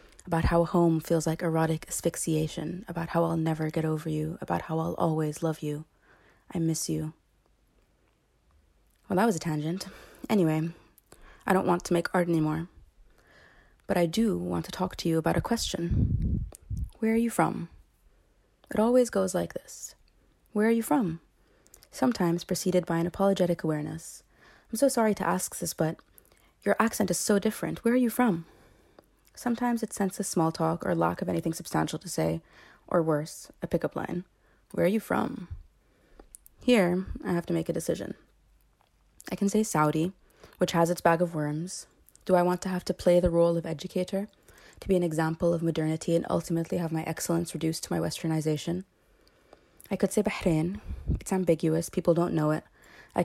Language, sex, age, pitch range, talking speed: English, female, 20-39, 160-185 Hz, 175 wpm